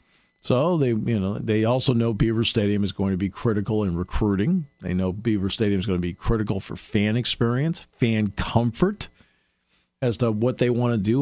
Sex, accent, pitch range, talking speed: male, American, 100-145 Hz, 200 wpm